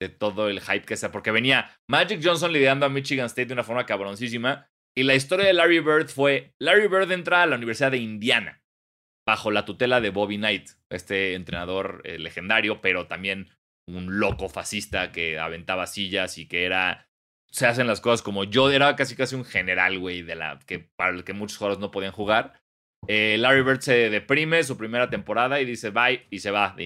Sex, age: male, 30-49